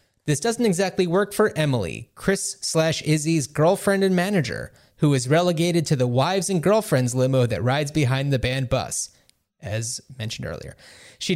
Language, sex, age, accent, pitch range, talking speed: English, male, 30-49, American, 130-180 Hz, 165 wpm